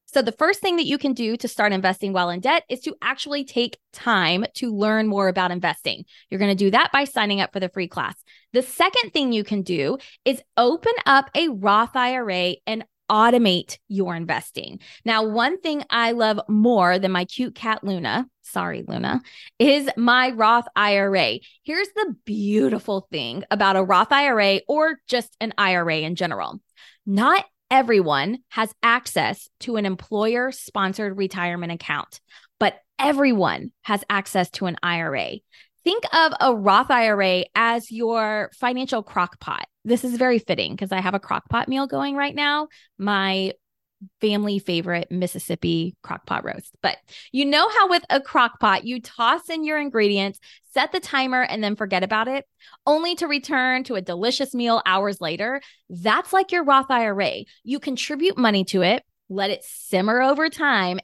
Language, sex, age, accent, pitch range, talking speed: English, female, 20-39, American, 195-270 Hz, 170 wpm